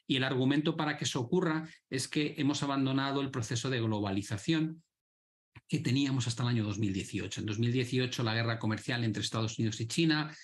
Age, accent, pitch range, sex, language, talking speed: 40-59, Spanish, 105-130 Hz, male, Spanish, 180 wpm